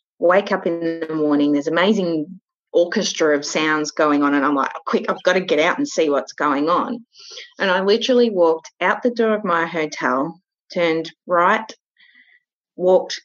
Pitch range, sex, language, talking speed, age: 170-220 Hz, female, English, 175 wpm, 30-49